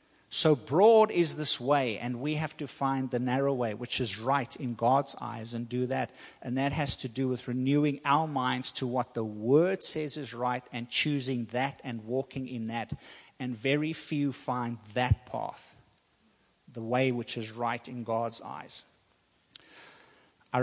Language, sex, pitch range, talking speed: English, male, 125-145 Hz, 175 wpm